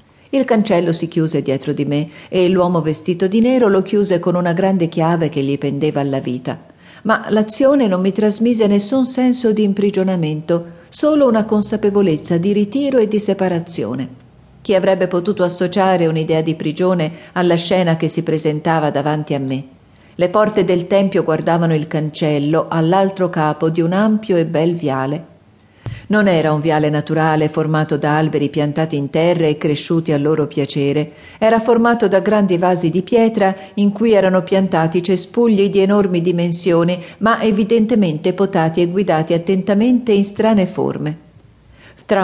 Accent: native